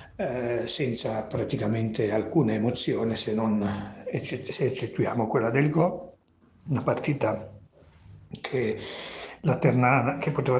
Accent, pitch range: native, 110-130 Hz